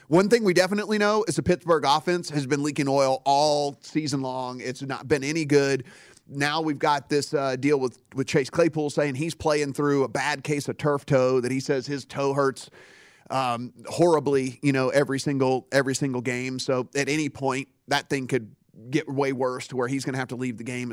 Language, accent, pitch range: English, American, 130-150 Hz